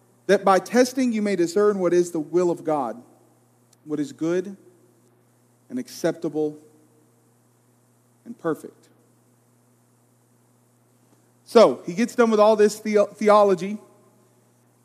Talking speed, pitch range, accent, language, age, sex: 110 wpm, 145-220 Hz, American, English, 40-59, male